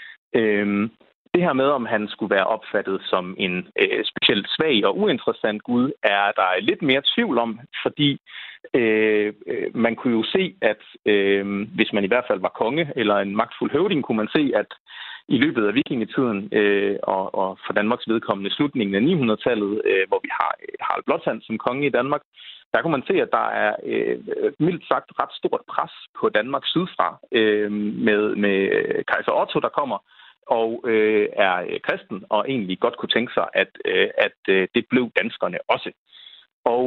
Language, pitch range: Danish, 105-140 Hz